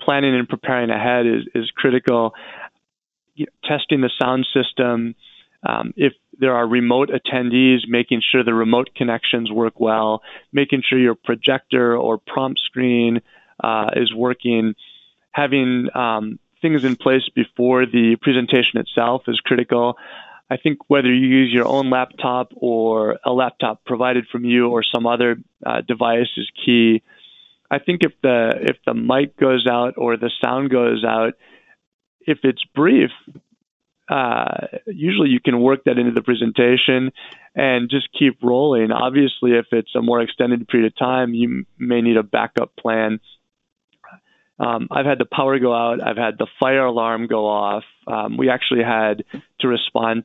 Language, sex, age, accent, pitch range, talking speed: English, male, 30-49, American, 115-130 Hz, 155 wpm